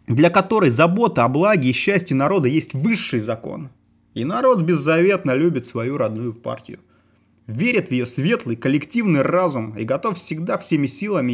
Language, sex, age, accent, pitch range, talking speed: Russian, male, 30-49, native, 120-175 Hz, 155 wpm